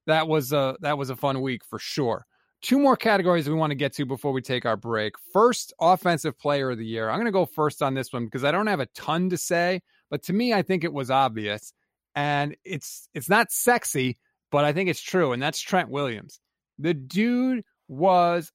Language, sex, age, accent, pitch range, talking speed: English, male, 30-49, American, 135-185 Hz, 225 wpm